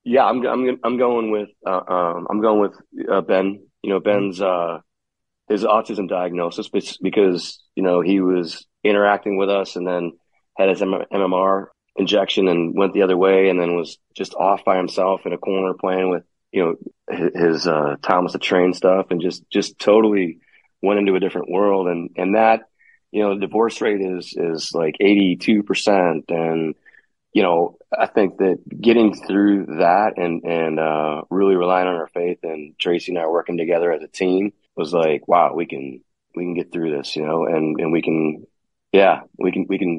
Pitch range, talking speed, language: 85-100 Hz, 190 wpm, English